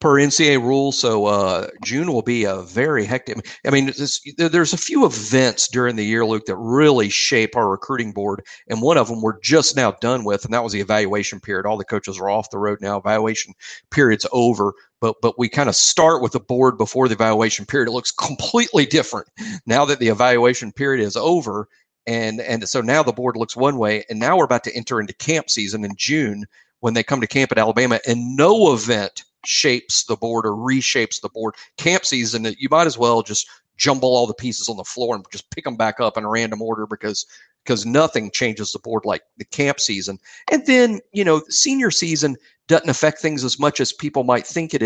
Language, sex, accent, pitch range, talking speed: English, male, American, 110-145 Hz, 225 wpm